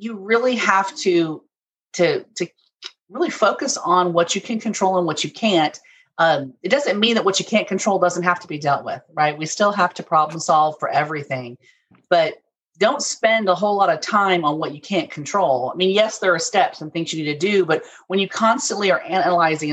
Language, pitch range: English, 165-210 Hz